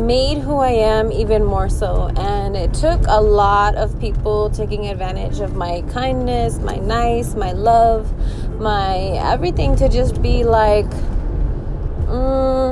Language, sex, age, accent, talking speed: English, female, 20-39, American, 140 wpm